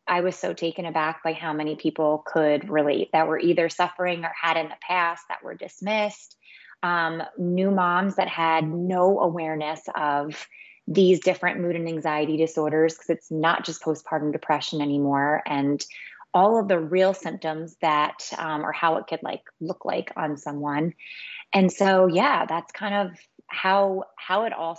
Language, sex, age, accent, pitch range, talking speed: English, female, 20-39, American, 155-180 Hz, 170 wpm